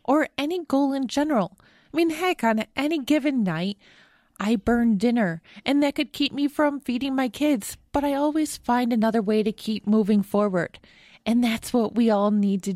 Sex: female